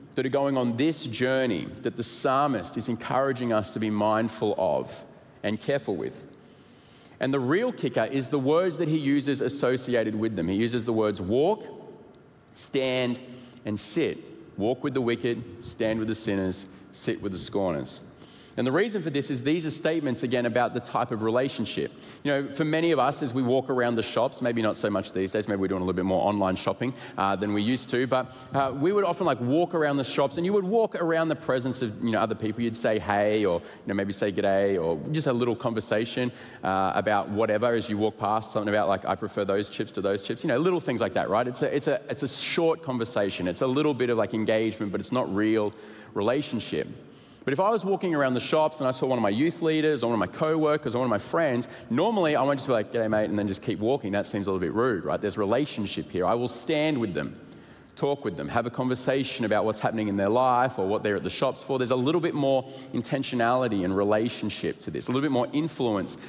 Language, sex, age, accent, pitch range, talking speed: English, male, 30-49, Australian, 105-135 Hz, 240 wpm